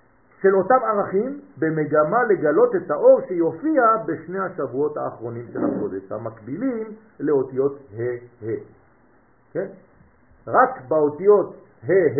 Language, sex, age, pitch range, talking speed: French, male, 50-69, 150-240 Hz, 95 wpm